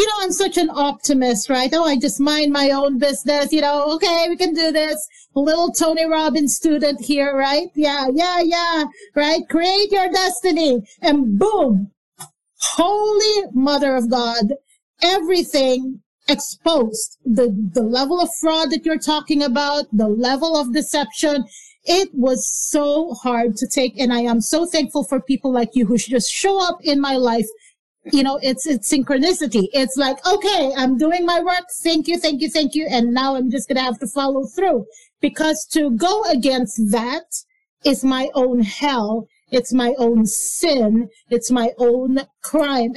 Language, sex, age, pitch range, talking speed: English, female, 40-59, 240-315 Hz, 170 wpm